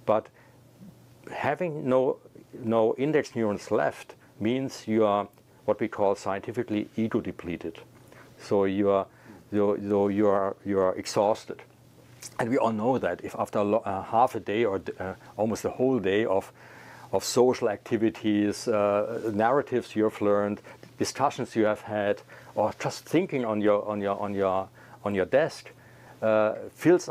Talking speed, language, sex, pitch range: 150 wpm, English, male, 100-120 Hz